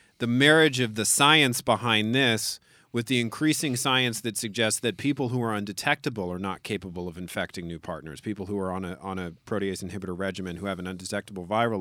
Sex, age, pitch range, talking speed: male, 40-59, 95-130 Hz, 200 wpm